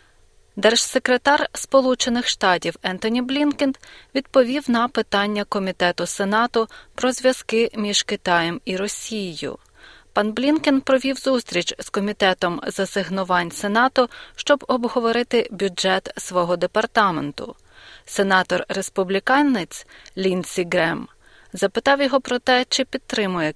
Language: Ukrainian